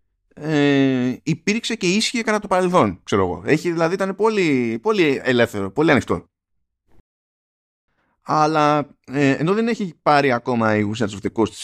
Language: Greek